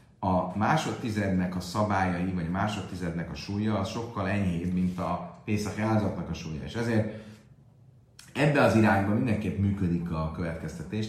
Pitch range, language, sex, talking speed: 85-110 Hz, Hungarian, male, 140 wpm